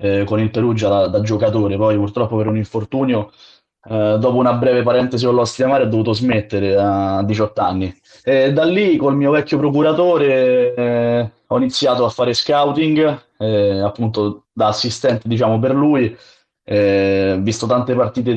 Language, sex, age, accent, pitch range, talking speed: Italian, male, 20-39, native, 105-125 Hz, 160 wpm